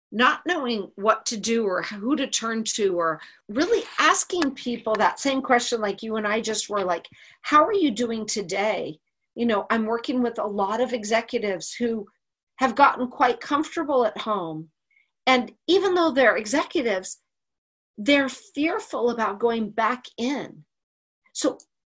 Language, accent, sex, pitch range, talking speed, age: English, American, female, 210-275 Hz, 155 wpm, 50-69